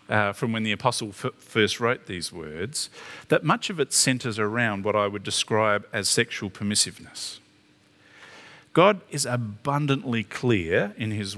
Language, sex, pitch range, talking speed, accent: English, male, 105-125 Hz, 150 wpm, Australian